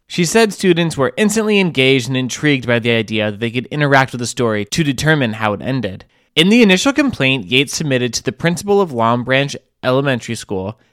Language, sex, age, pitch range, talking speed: English, male, 20-39, 115-150 Hz, 205 wpm